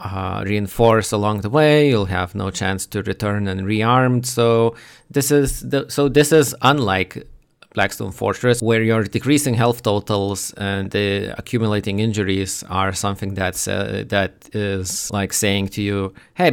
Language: English